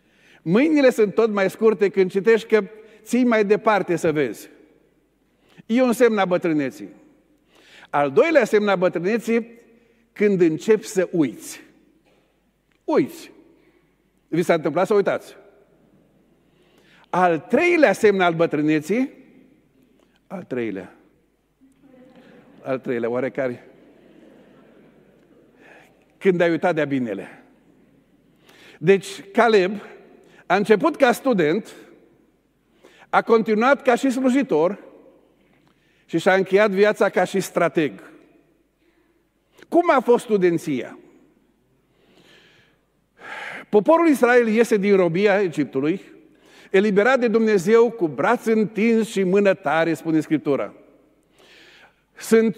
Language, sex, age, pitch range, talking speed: Romanian, male, 50-69, 180-245 Hz, 100 wpm